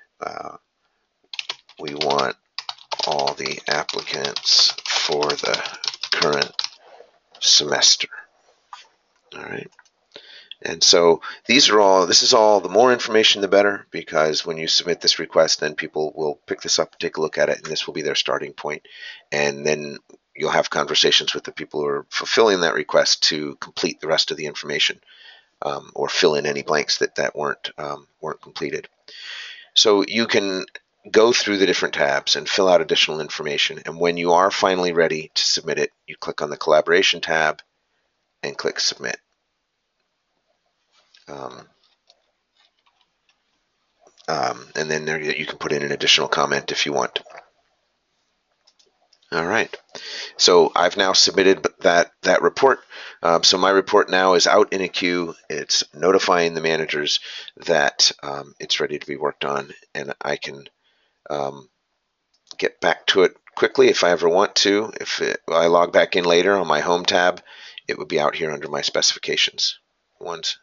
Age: 40-59